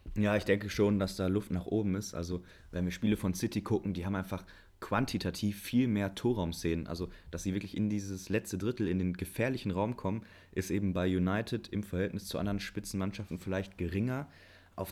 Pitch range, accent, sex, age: 90-100 Hz, German, male, 20-39